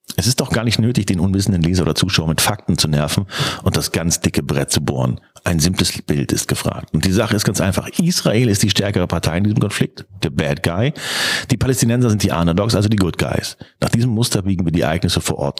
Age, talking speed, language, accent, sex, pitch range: 40-59, 240 wpm, German, German, male, 85-115 Hz